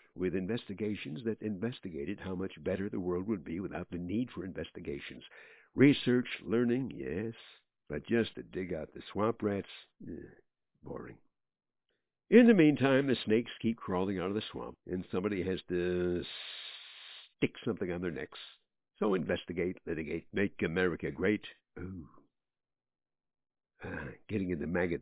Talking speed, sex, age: 145 wpm, male, 60-79